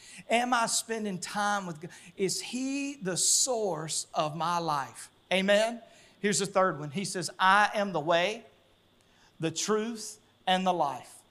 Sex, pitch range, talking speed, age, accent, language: male, 185-260 Hz, 155 wpm, 40-59, American, English